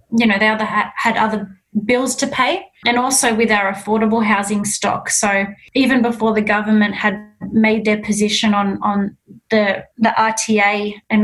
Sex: female